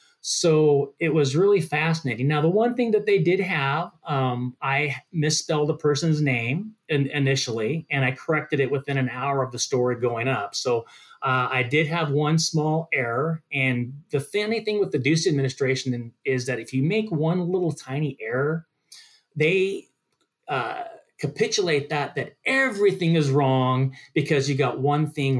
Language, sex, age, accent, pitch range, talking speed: English, male, 30-49, American, 125-160 Hz, 165 wpm